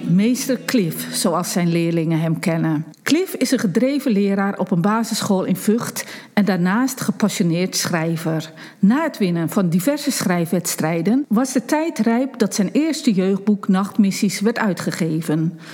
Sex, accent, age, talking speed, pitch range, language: female, Dutch, 50-69, 145 wpm, 175-250 Hz, Dutch